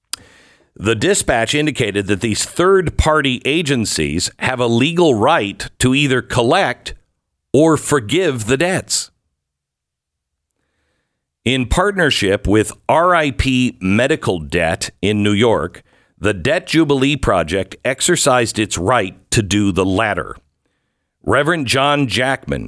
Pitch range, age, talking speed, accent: 95-130 Hz, 50-69, 110 wpm, American